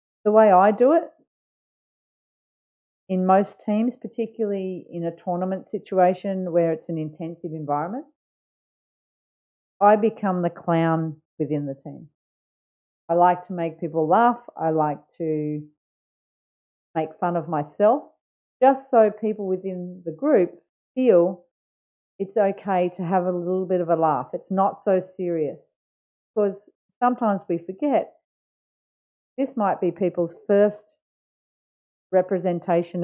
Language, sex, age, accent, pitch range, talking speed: English, female, 40-59, Australian, 165-205 Hz, 125 wpm